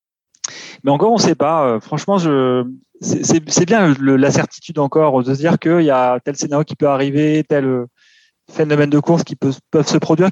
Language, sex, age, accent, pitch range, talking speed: French, male, 30-49, French, 130-160 Hz, 210 wpm